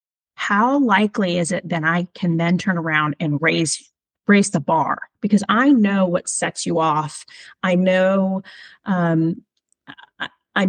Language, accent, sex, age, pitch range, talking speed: English, American, female, 30-49, 170-205 Hz, 145 wpm